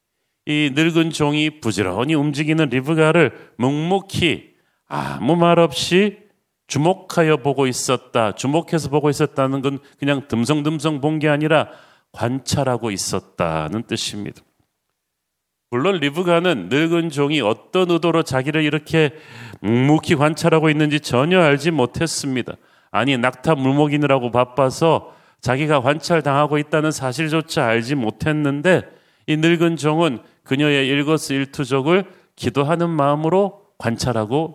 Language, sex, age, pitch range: Korean, male, 40-59, 125-160 Hz